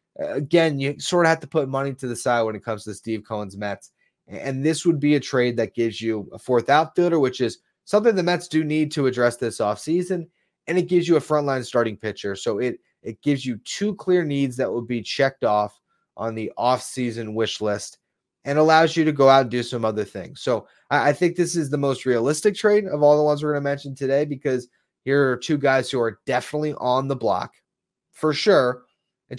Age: 30-49